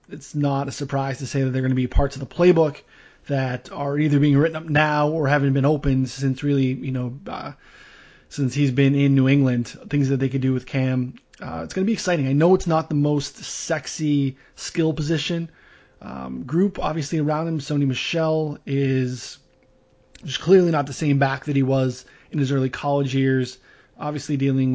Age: 20-39